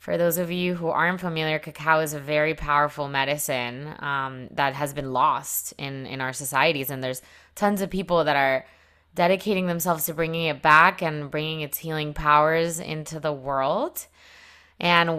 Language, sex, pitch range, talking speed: English, female, 145-185 Hz, 175 wpm